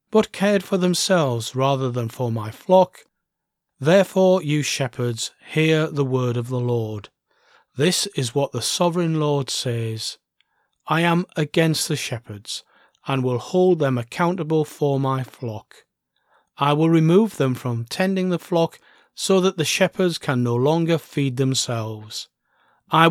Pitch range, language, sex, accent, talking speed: 125-175 Hz, English, male, British, 145 wpm